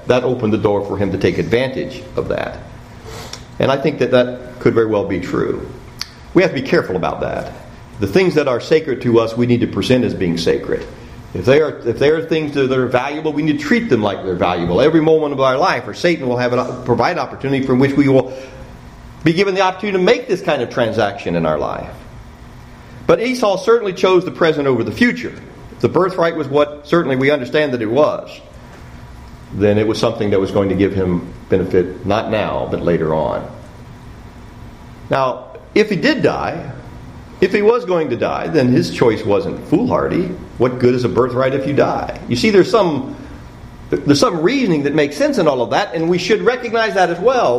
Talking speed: 210 wpm